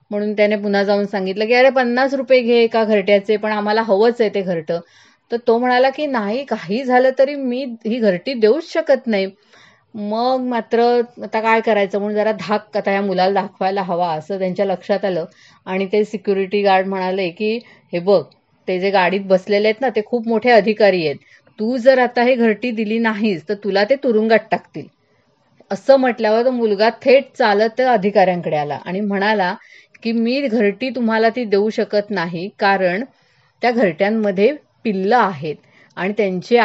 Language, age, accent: Marathi, 30-49, native